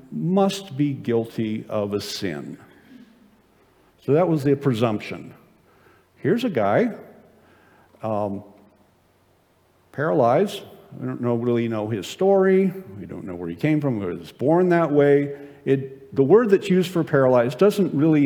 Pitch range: 115-185 Hz